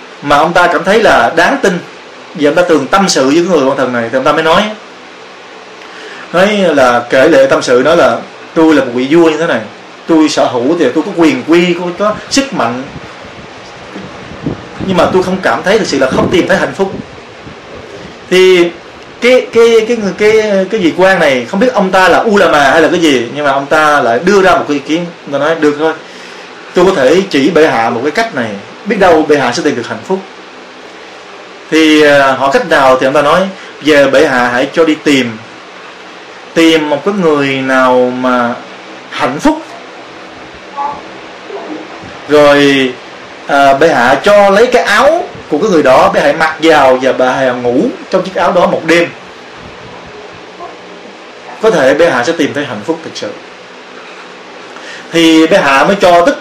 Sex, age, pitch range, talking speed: male, 20-39, 135-190 Hz, 200 wpm